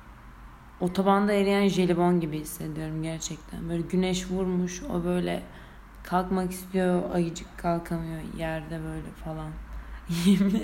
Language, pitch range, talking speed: Turkish, 170-195 Hz, 105 wpm